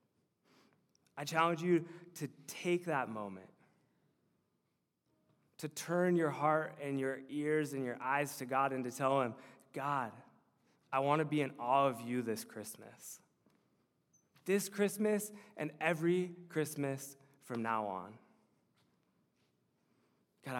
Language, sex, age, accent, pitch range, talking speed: English, male, 20-39, American, 130-155 Hz, 125 wpm